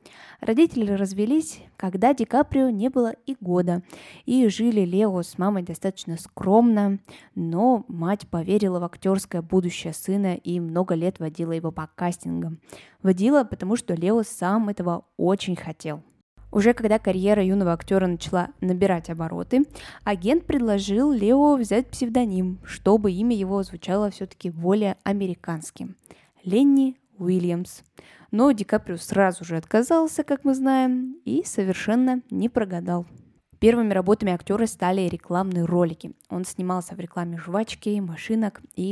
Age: 20-39